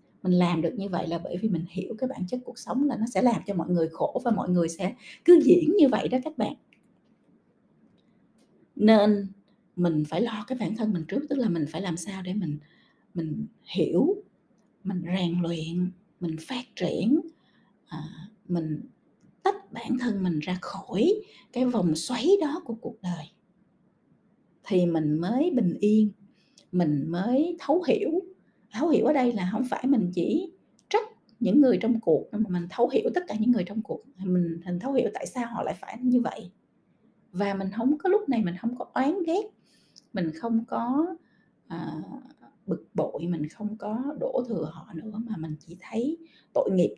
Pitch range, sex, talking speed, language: 180-250 Hz, female, 185 wpm, Vietnamese